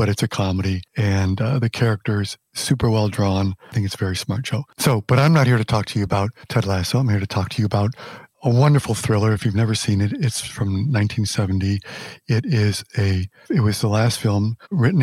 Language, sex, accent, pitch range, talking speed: English, male, American, 100-120 Hz, 230 wpm